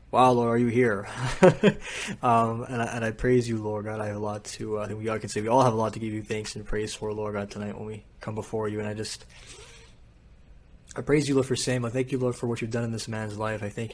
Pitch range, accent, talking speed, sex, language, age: 110-125 Hz, American, 295 wpm, male, English, 20-39